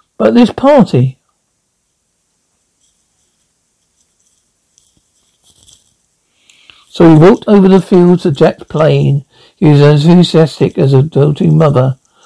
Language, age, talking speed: English, 60-79, 95 wpm